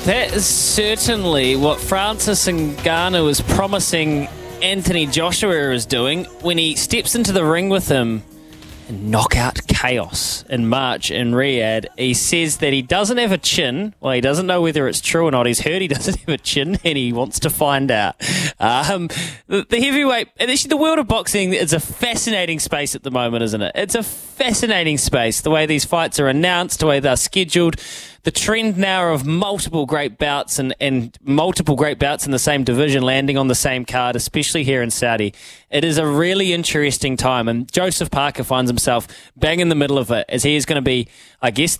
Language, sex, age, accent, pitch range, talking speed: English, male, 20-39, Australian, 125-175 Hz, 195 wpm